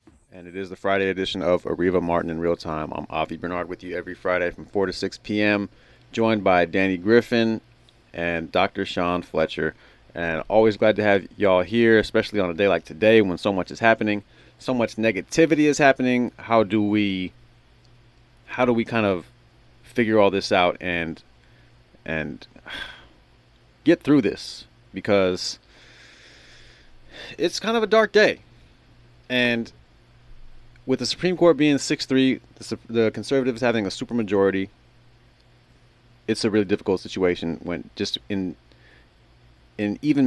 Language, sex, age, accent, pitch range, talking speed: English, male, 30-49, American, 90-120 Hz, 155 wpm